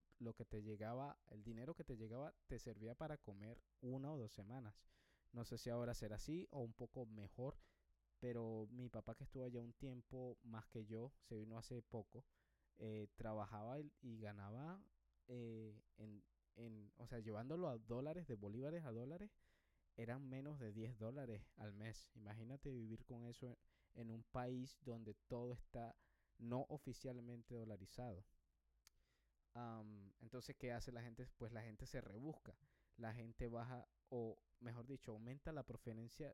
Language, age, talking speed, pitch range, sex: Spanish, 20-39, 165 wpm, 110-125 Hz, male